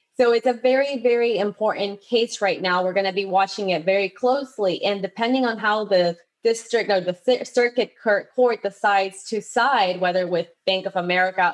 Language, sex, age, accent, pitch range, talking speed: English, female, 20-39, American, 190-245 Hz, 180 wpm